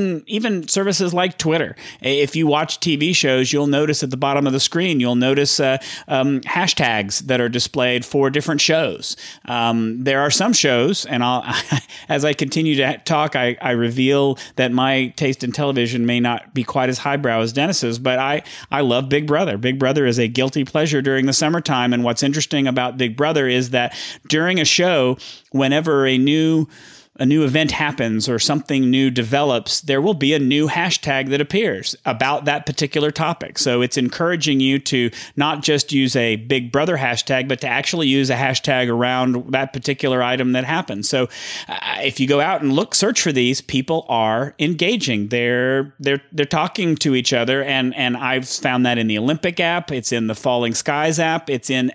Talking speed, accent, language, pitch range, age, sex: 195 wpm, American, English, 125-150 Hz, 40-59, male